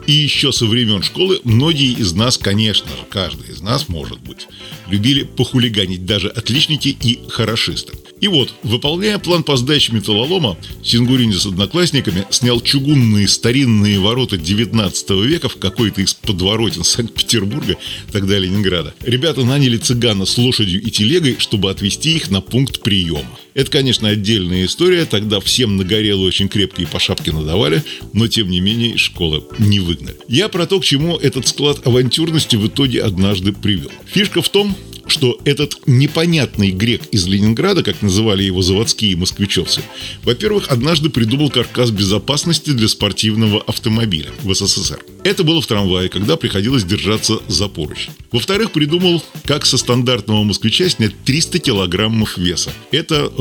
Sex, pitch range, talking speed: male, 100-130 Hz, 150 wpm